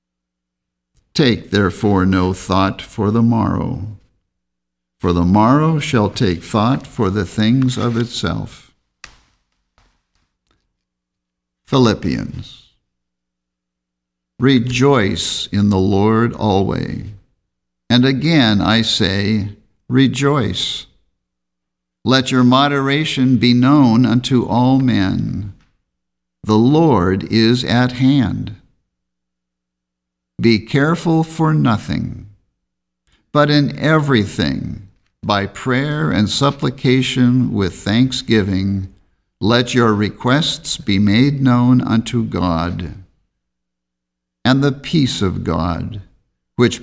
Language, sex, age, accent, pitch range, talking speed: English, male, 60-79, American, 85-125 Hz, 90 wpm